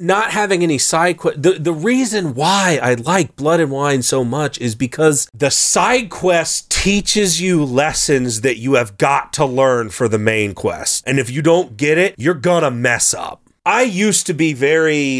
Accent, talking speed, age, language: American, 195 wpm, 30-49, English